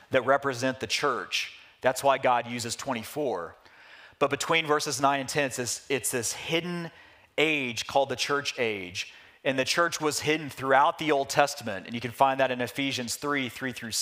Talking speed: 185 wpm